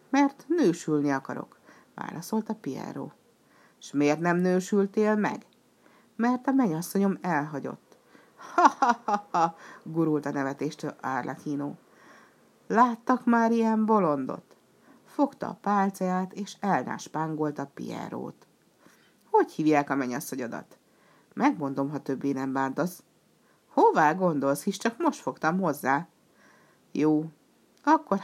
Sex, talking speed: female, 110 wpm